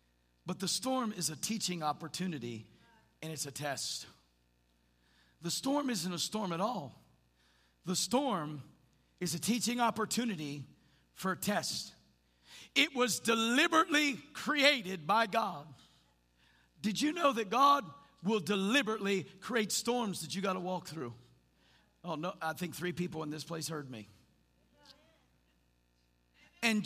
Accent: American